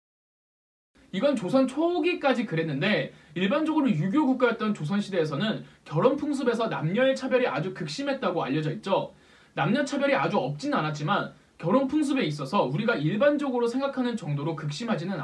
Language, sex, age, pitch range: Korean, male, 20-39, 185-265 Hz